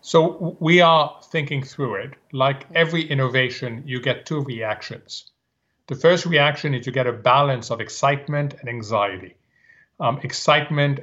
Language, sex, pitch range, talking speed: English, male, 125-155 Hz, 145 wpm